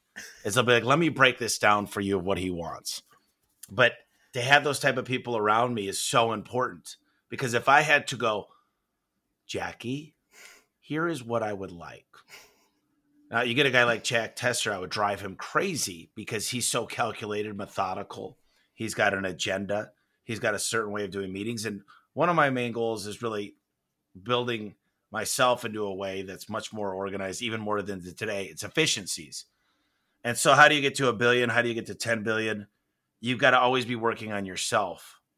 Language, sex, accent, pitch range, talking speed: English, male, American, 100-125 Hz, 200 wpm